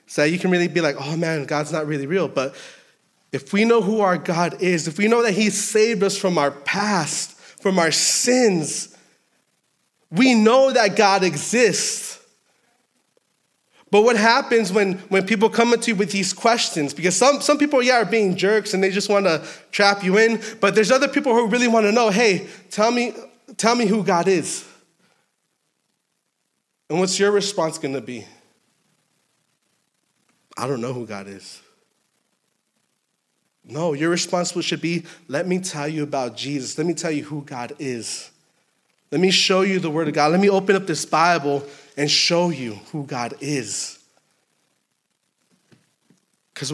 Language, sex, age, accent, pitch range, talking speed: English, male, 20-39, American, 150-205 Hz, 175 wpm